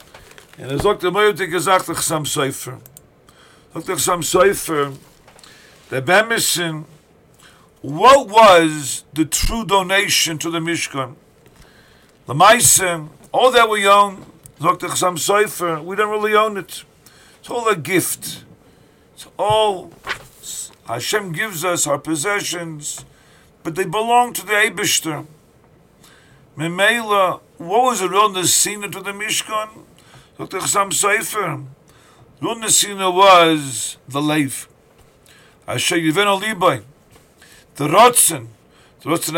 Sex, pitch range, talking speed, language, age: male, 155-210 Hz, 105 wpm, English, 50-69